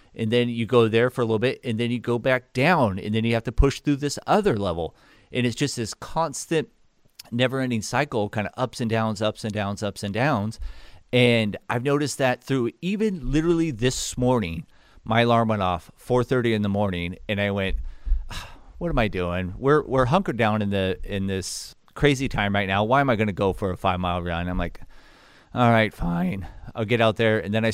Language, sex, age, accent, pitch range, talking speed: English, male, 30-49, American, 100-130 Hz, 225 wpm